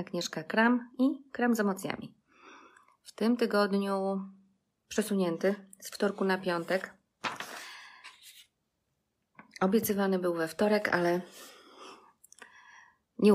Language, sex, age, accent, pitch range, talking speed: Polish, female, 30-49, native, 180-220 Hz, 90 wpm